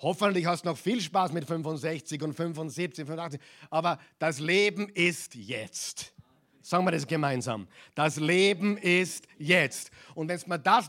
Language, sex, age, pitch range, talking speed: German, male, 50-69, 160-210 Hz, 160 wpm